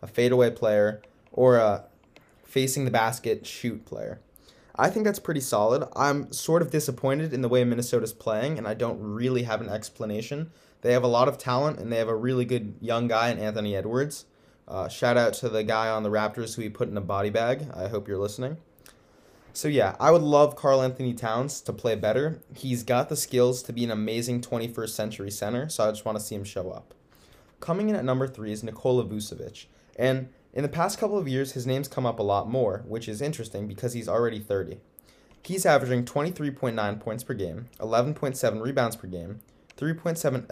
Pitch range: 110-135 Hz